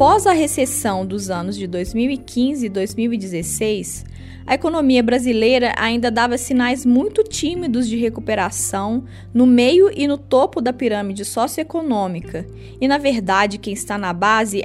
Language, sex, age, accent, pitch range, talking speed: Portuguese, female, 10-29, Brazilian, 210-280 Hz, 140 wpm